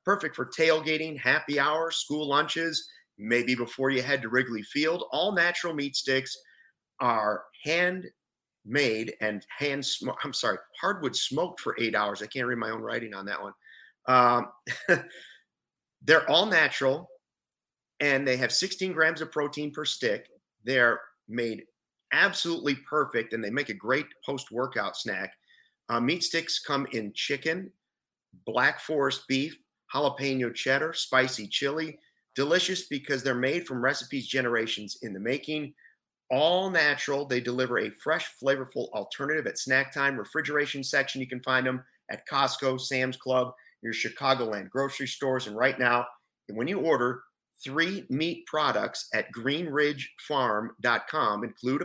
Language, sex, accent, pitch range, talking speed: English, male, American, 125-155 Hz, 140 wpm